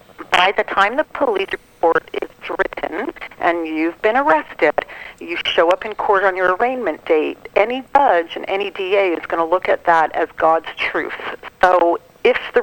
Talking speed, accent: 180 wpm, American